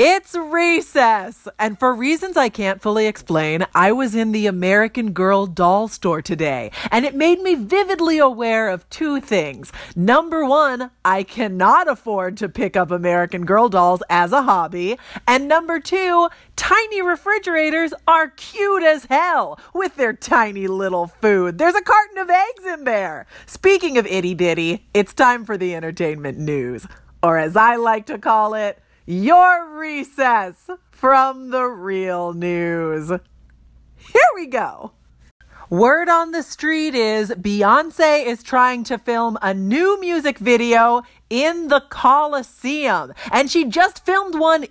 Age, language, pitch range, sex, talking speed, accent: 40-59, English, 190-300 Hz, female, 145 wpm, American